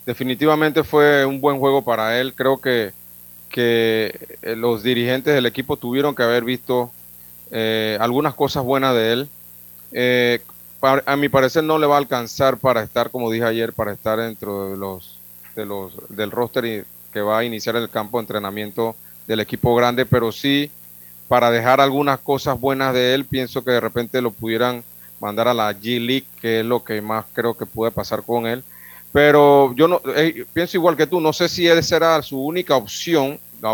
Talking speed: 190 wpm